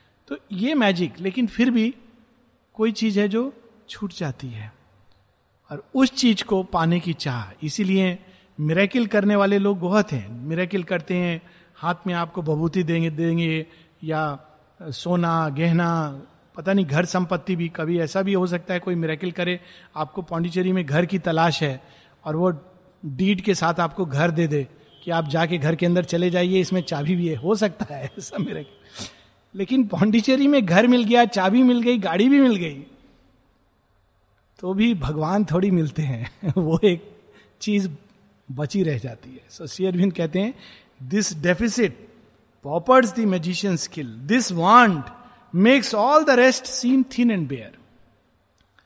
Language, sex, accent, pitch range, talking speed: Hindi, male, native, 155-210 Hz, 160 wpm